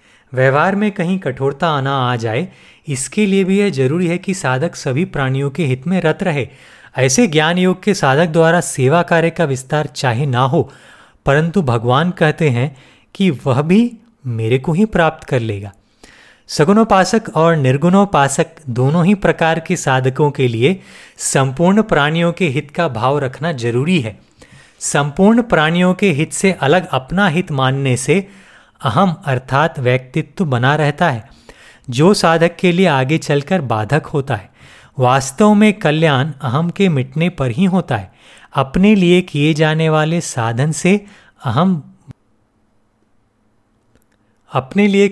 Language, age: Hindi, 30-49